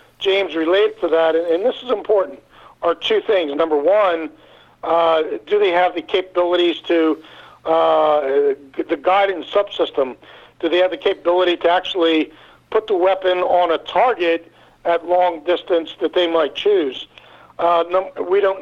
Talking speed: 150 wpm